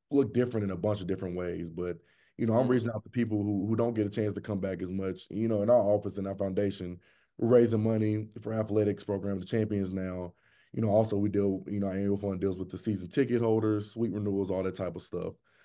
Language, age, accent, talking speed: English, 20-39, American, 255 wpm